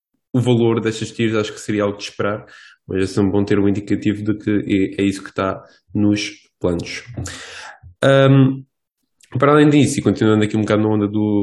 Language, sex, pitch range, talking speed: English, male, 105-125 Hz, 195 wpm